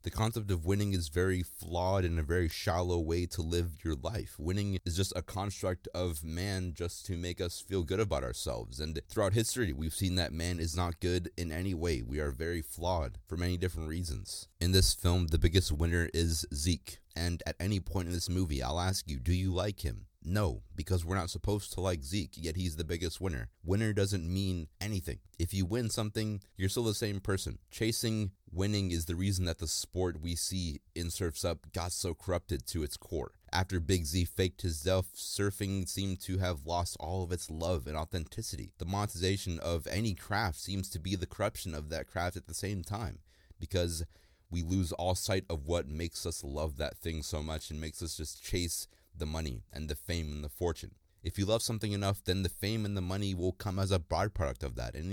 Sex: male